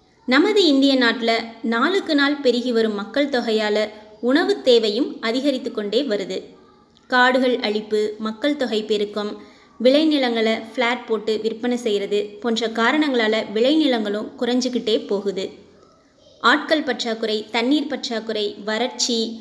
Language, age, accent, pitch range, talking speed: Tamil, 20-39, native, 220-280 Hz, 105 wpm